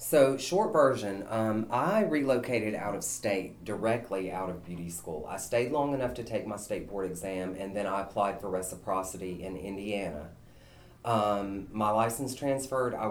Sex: female